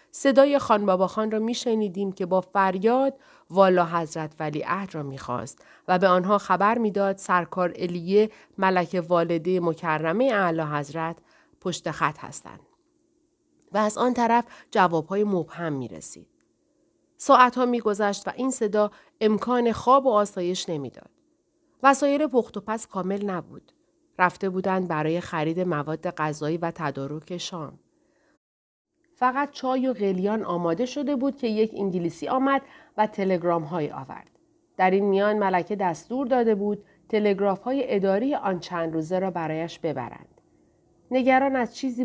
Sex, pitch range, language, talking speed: female, 170-235 Hz, Persian, 140 wpm